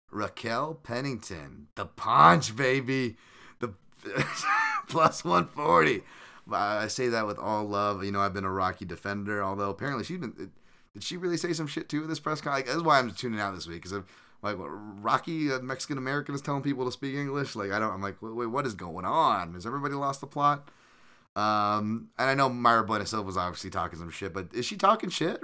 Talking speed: 210 wpm